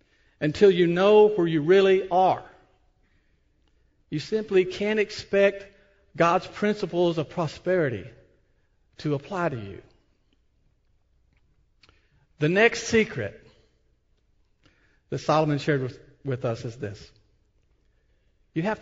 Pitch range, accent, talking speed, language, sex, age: 145-215 Hz, American, 100 wpm, English, male, 50-69